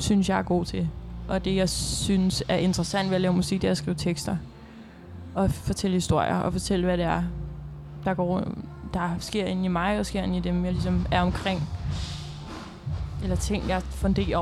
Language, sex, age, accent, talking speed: Danish, female, 20-39, native, 200 wpm